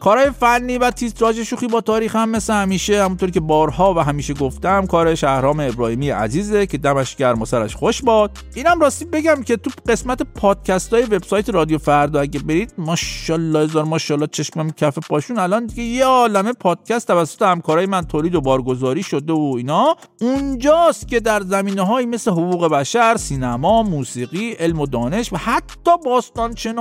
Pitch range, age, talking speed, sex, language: 165-240 Hz, 50-69, 160 wpm, male, Persian